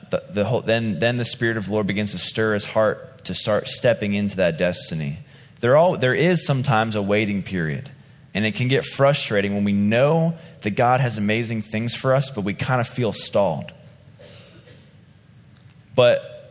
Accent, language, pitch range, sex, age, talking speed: American, English, 105-140 Hz, male, 20-39, 185 wpm